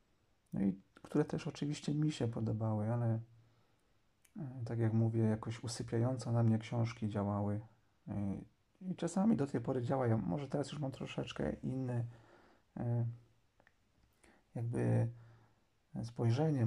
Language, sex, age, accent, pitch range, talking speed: Polish, male, 40-59, native, 110-125 Hz, 120 wpm